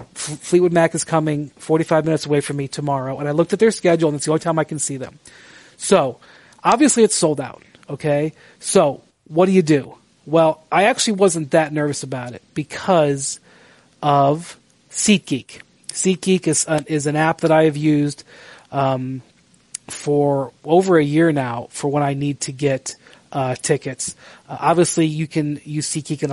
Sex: male